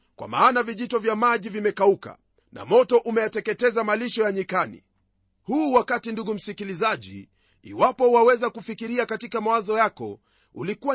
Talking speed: 125 wpm